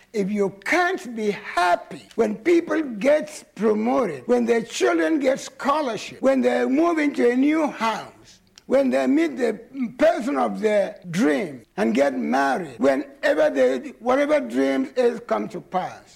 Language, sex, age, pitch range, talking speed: English, male, 60-79, 180-295 Hz, 150 wpm